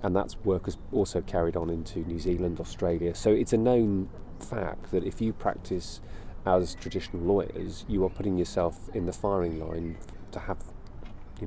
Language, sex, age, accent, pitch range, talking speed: English, male, 30-49, British, 85-100 Hz, 180 wpm